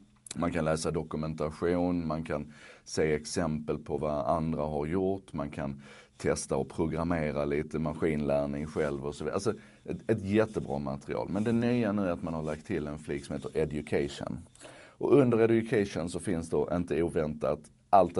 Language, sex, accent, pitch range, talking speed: Swedish, male, native, 75-90 Hz, 175 wpm